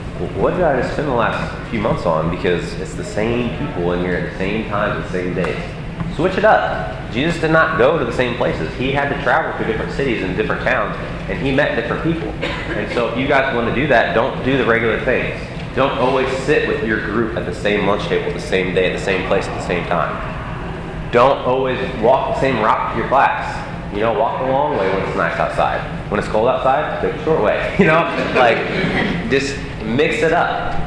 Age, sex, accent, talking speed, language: 30-49, male, American, 235 wpm, English